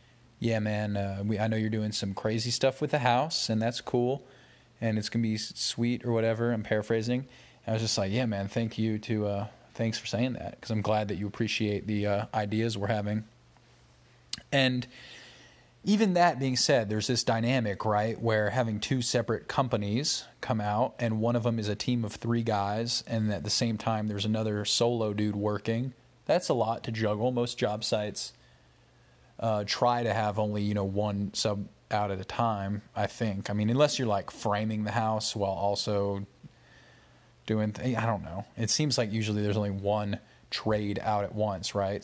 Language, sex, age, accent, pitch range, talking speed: English, male, 20-39, American, 105-120 Hz, 200 wpm